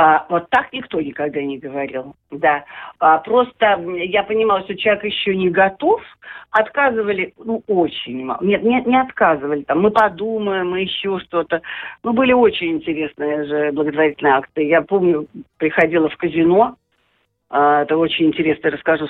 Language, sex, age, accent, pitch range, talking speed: Russian, female, 50-69, native, 155-215 Hz, 145 wpm